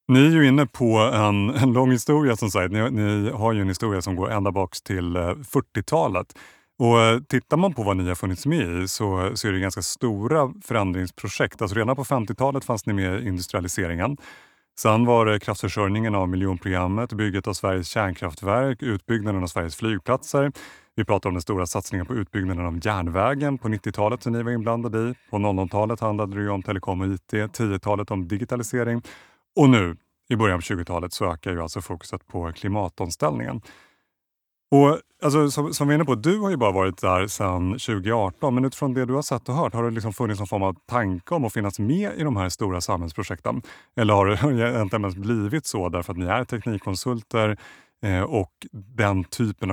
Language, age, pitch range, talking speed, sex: Swedish, 30-49, 95-120 Hz, 195 wpm, male